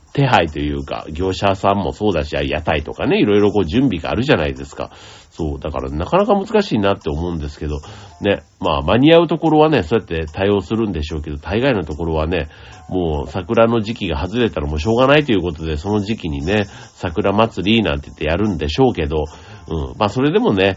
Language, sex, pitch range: Japanese, male, 80-115 Hz